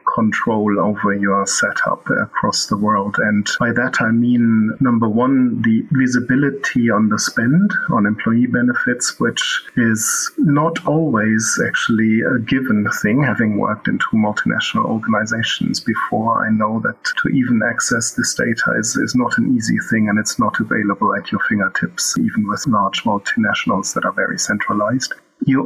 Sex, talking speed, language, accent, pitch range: male, 155 wpm, English, German, 110-145 Hz